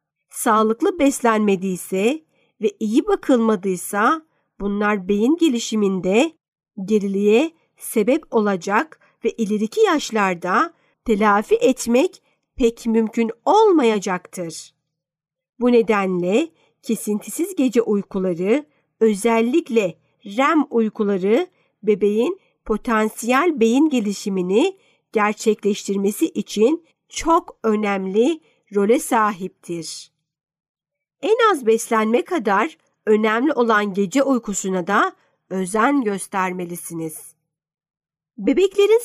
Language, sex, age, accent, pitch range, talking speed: Turkish, female, 50-69, native, 195-270 Hz, 75 wpm